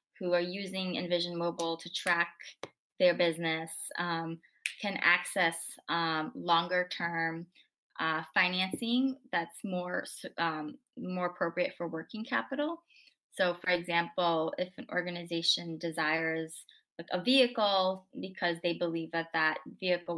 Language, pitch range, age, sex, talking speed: English, 170-200 Hz, 20-39, female, 120 wpm